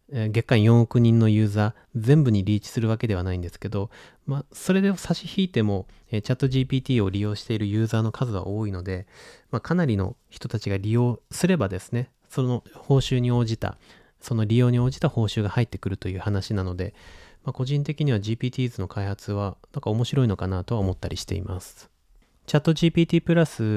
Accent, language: native, Japanese